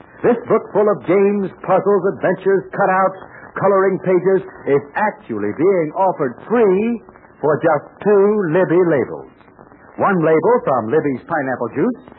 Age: 60-79